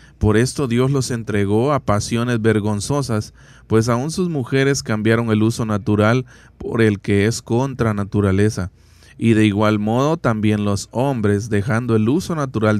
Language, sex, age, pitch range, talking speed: Spanish, male, 20-39, 105-120 Hz, 155 wpm